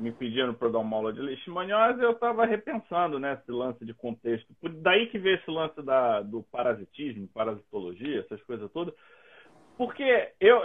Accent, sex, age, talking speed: Brazilian, male, 40-59, 175 wpm